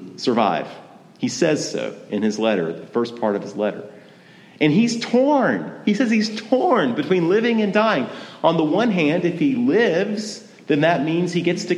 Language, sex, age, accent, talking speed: English, male, 40-59, American, 190 wpm